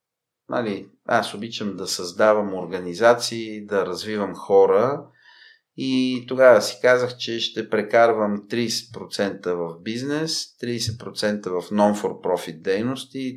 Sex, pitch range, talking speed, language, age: male, 100-125 Hz, 105 wpm, Bulgarian, 30-49